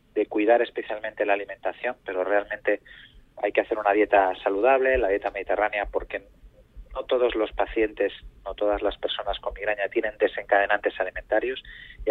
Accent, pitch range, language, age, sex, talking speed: Spanish, 105-130 Hz, Spanish, 30-49, male, 155 wpm